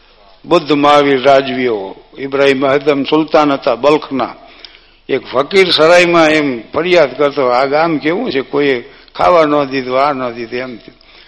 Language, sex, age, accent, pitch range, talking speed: Gujarati, male, 60-79, native, 145-190 Hz, 150 wpm